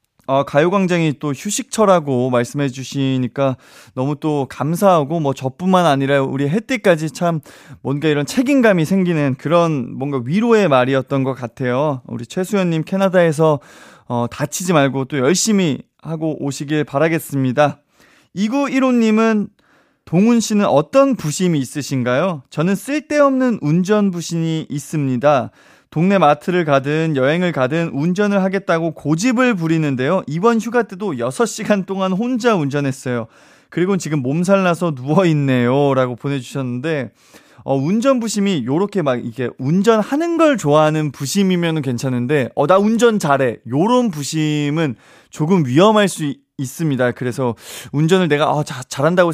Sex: male